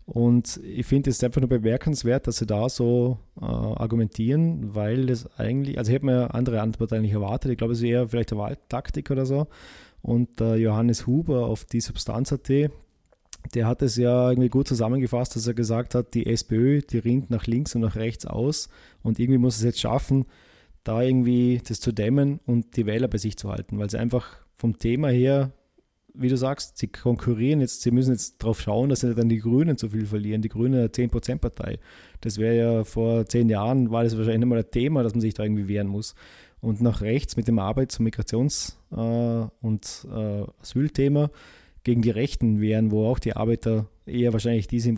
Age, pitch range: 20-39, 110-125 Hz